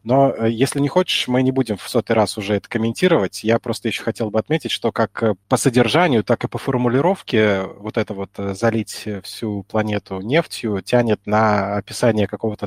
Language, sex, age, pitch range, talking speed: Russian, male, 20-39, 105-125 Hz, 180 wpm